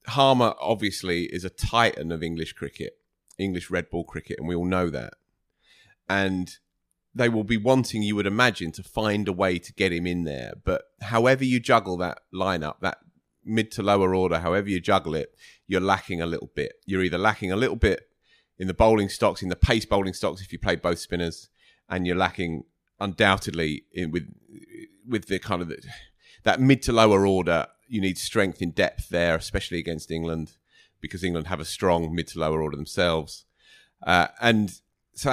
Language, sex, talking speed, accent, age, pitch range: English, male, 185 wpm, British, 30-49, 85-110 Hz